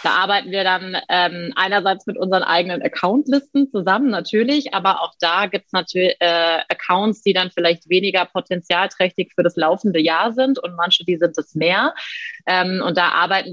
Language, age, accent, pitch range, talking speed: German, 20-39, German, 170-205 Hz, 175 wpm